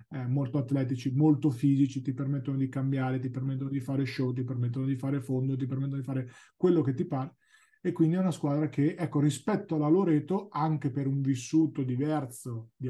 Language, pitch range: Italian, 135-175 Hz